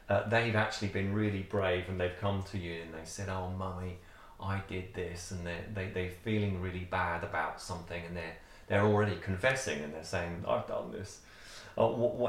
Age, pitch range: 30-49, 90-105 Hz